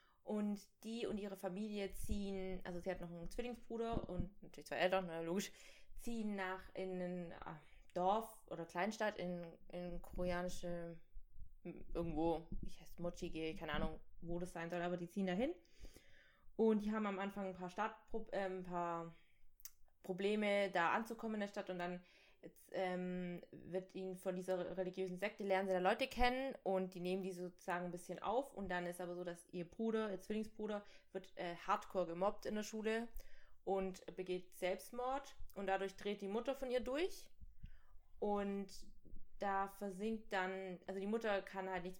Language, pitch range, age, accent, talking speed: German, 180-205 Hz, 20-39, German, 170 wpm